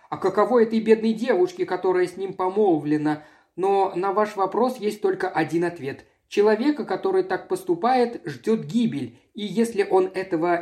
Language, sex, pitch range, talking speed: Russian, male, 170-250 Hz, 155 wpm